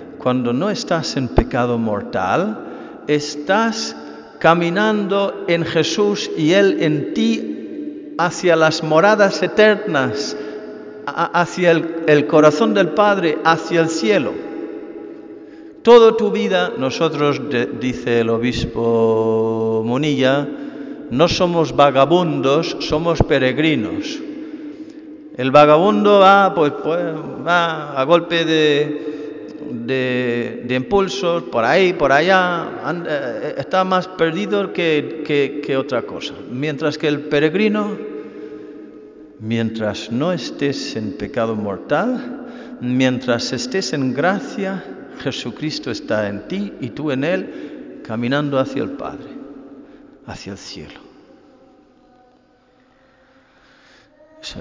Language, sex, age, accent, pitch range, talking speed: Spanish, male, 50-69, Spanish, 140-225 Hz, 105 wpm